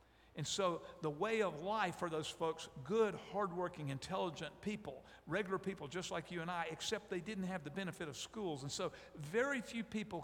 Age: 50-69